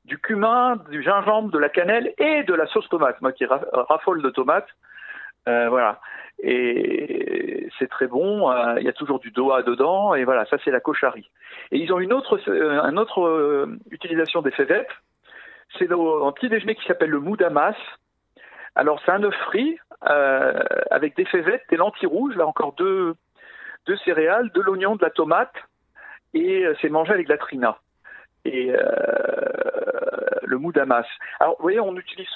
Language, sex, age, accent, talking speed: French, male, 50-69, French, 175 wpm